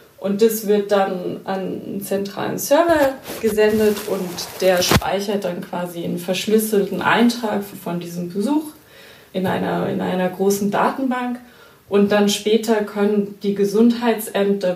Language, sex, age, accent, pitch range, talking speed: German, female, 20-39, German, 185-215 Hz, 125 wpm